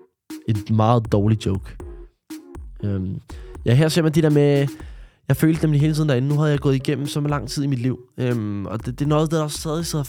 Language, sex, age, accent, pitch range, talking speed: Danish, male, 20-39, native, 120-150 Hz, 230 wpm